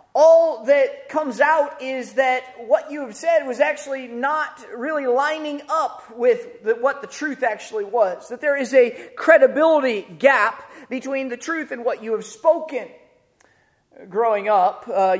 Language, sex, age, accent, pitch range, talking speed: English, male, 30-49, American, 230-295 Hz, 160 wpm